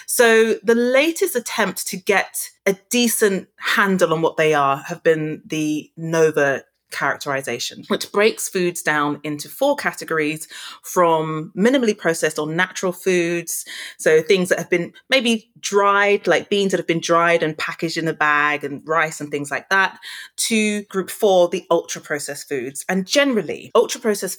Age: 20-39